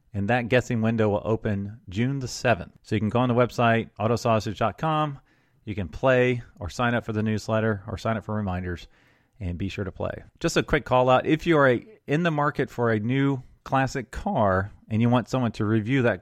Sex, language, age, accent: male, English, 30-49, American